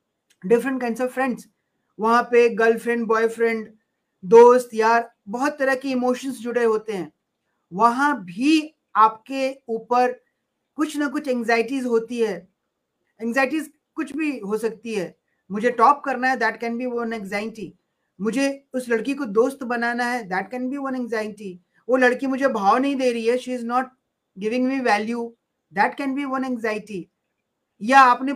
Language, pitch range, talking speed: Hindi, 225-260 Hz, 165 wpm